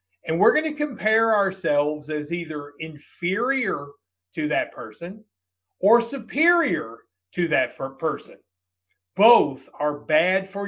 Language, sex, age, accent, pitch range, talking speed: English, male, 50-69, American, 150-200 Hz, 125 wpm